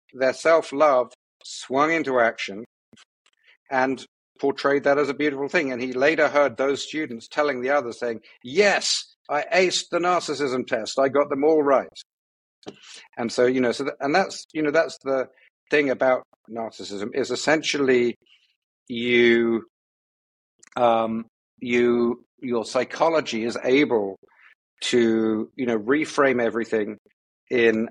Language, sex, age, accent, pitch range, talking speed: English, male, 50-69, British, 115-140 Hz, 135 wpm